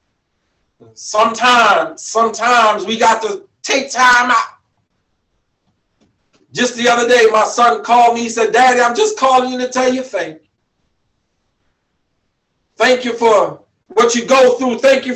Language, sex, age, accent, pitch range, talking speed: English, male, 40-59, American, 215-265 Hz, 145 wpm